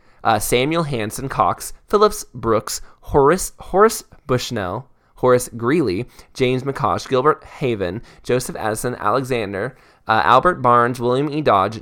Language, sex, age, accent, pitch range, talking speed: English, male, 20-39, American, 115-150 Hz, 120 wpm